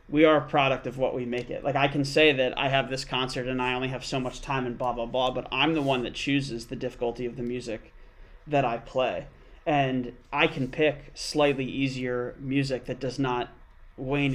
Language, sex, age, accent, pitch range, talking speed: English, male, 30-49, American, 125-140 Hz, 225 wpm